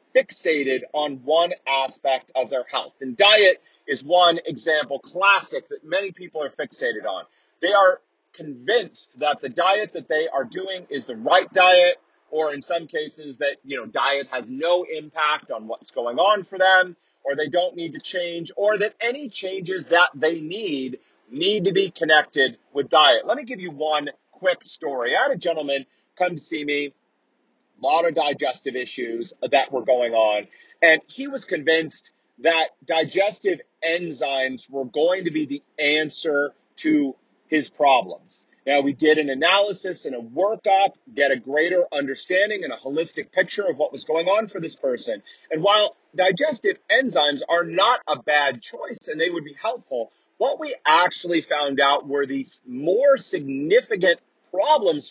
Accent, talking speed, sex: American, 170 wpm, male